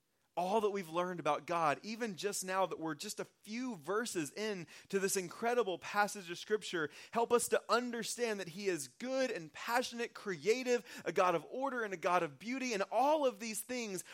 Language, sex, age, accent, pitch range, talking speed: English, male, 30-49, American, 165-225 Hz, 200 wpm